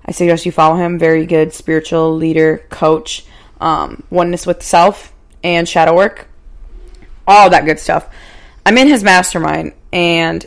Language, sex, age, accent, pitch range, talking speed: English, female, 20-39, American, 160-195 Hz, 150 wpm